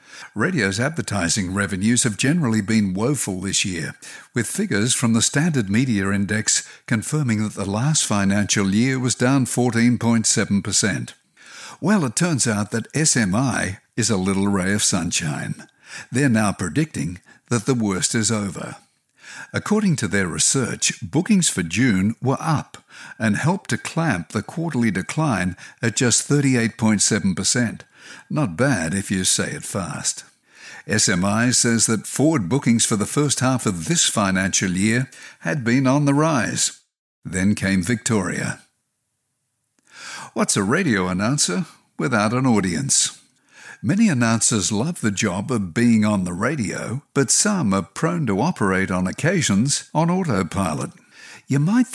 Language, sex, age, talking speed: English, male, 60-79, 140 wpm